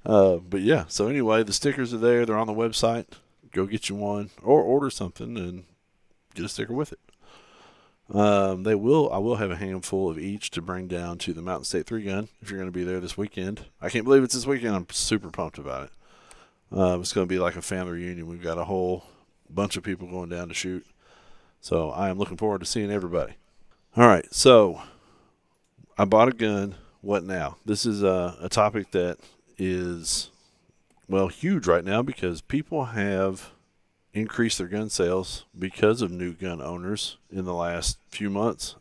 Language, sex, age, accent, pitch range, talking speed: English, male, 40-59, American, 90-105 Hz, 200 wpm